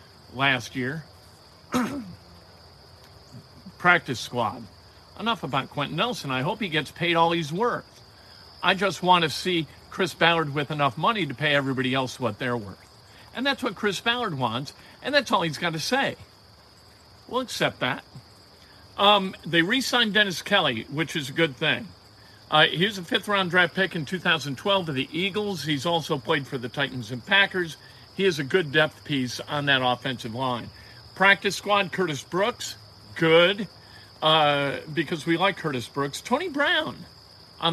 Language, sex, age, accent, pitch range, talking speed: English, male, 50-69, American, 125-180 Hz, 160 wpm